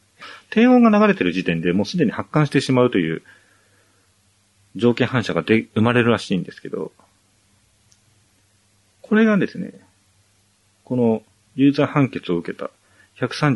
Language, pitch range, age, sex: Japanese, 95-130 Hz, 40-59, male